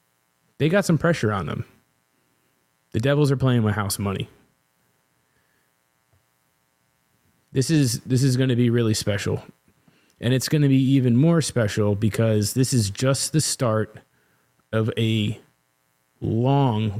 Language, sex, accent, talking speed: English, male, American, 140 wpm